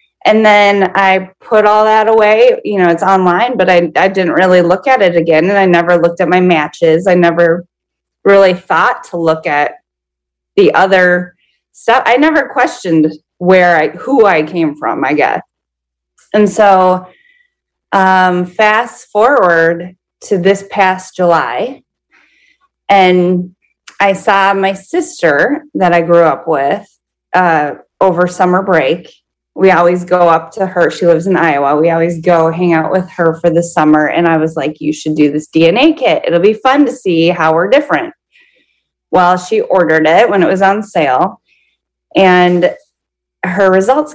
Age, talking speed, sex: 30-49, 165 wpm, female